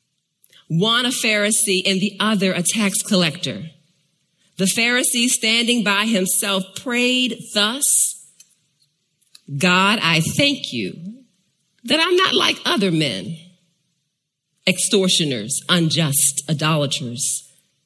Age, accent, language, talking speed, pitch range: 40-59, American, English, 95 wpm, 160-200 Hz